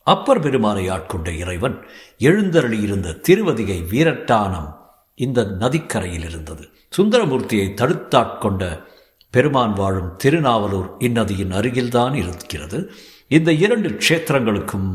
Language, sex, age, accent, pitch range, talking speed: Tamil, male, 60-79, native, 95-125 Hz, 90 wpm